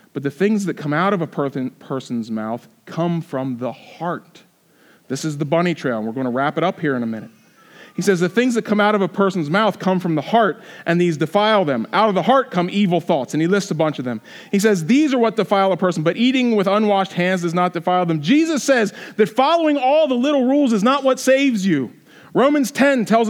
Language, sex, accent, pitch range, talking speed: English, male, American, 180-250 Hz, 245 wpm